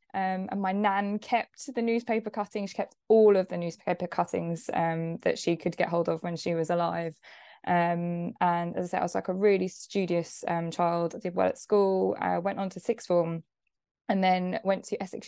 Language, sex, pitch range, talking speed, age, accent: English, female, 175-215 Hz, 215 wpm, 10-29, British